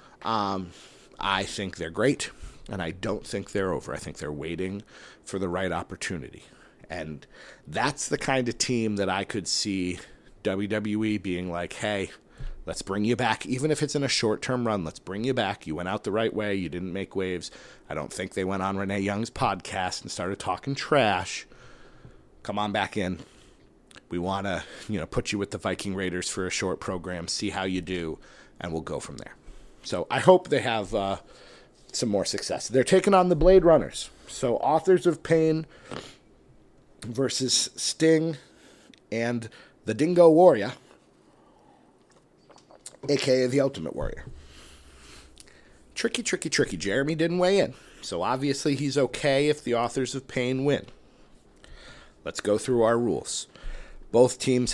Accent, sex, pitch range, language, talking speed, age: American, male, 95-135 Hz, English, 170 wpm, 40-59